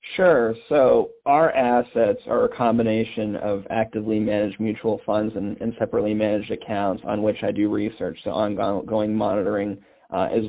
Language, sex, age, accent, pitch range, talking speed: English, male, 40-59, American, 105-115 Hz, 155 wpm